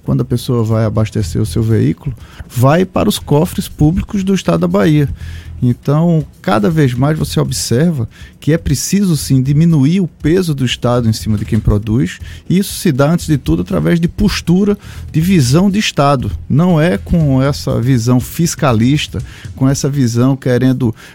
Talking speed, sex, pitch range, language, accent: 175 wpm, male, 120-165 Hz, Portuguese, Brazilian